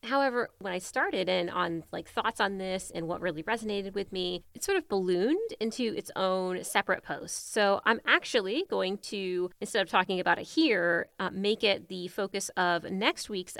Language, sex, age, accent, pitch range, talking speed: English, female, 30-49, American, 180-240 Hz, 195 wpm